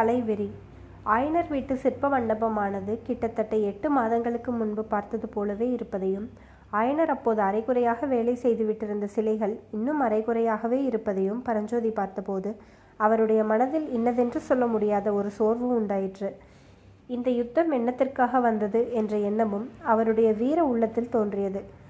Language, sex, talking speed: Tamil, female, 105 wpm